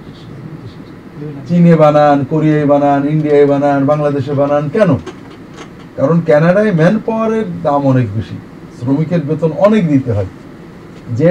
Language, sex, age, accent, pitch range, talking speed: Bengali, male, 60-79, native, 130-180 Hz, 100 wpm